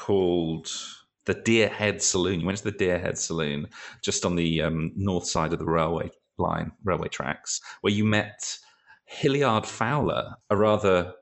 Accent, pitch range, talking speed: British, 80-100 Hz, 155 wpm